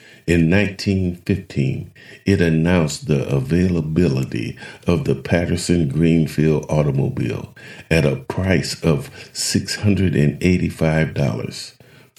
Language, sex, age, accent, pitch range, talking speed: English, male, 50-69, American, 75-95 Hz, 75 wpm